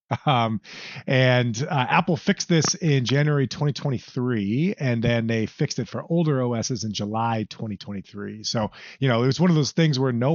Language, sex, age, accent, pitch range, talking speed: English, male, 30-49, American, 115-150 Hz, 180 wpm